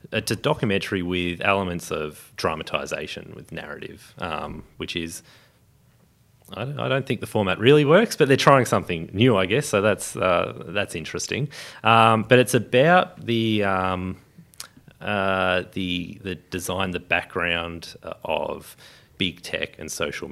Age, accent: 30-49, Australian